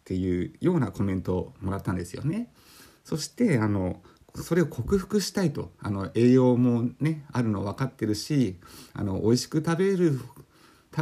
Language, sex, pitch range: Japanese, male, 105-165 Hz